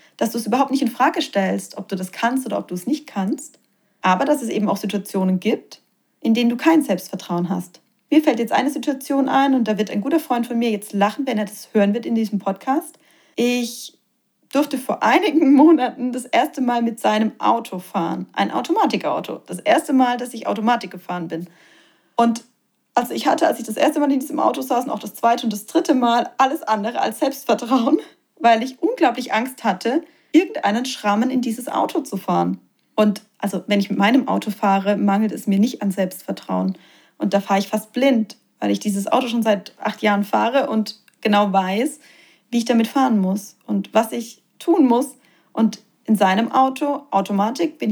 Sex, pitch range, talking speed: female, 205-270 Hz, 205 wpm